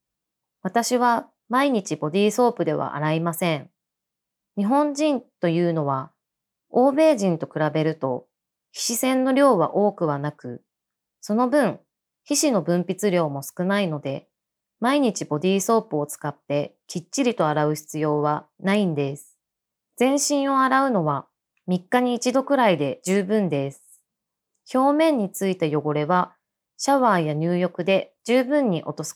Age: 20-39